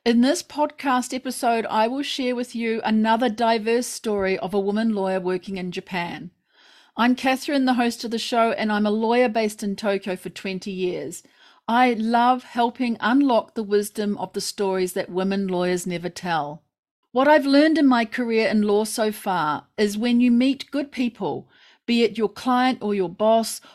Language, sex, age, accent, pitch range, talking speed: English, female, 40-59, Australian, 200-255 Hz, 185 wpm